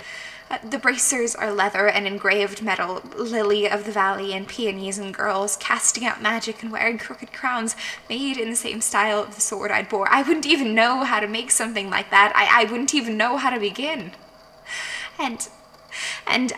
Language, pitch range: English, 205-245 Hz